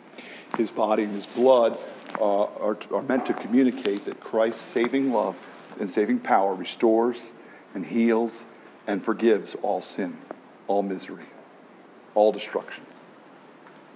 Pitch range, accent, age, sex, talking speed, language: 105-120 Hz, American, 50-69, male, 125 wpm, English